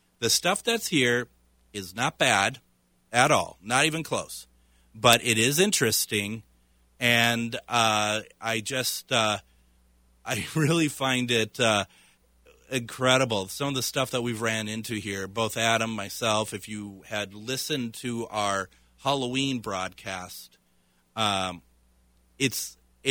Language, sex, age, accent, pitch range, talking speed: English, male, 30-49, American, 95-125 Hz, 120 wpm